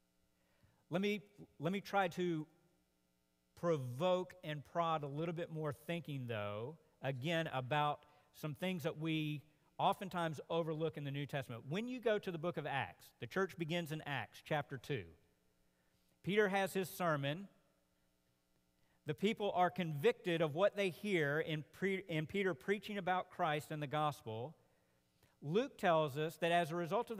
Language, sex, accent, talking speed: English, male, American, 160 wpm